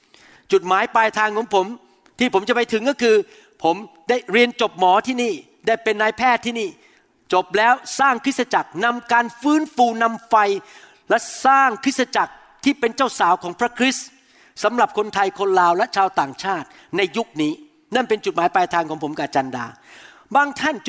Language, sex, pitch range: Thai, male, 200-265 Hz